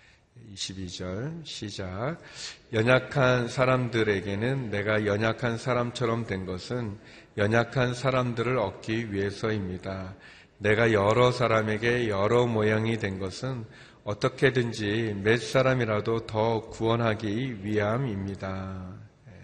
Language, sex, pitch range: Korean, male, 105-125 Hz